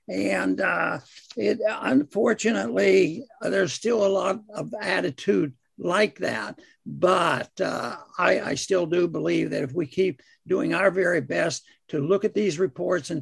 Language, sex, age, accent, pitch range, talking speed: English, male, 60-79, American, 185-225 Hz, 145 wpm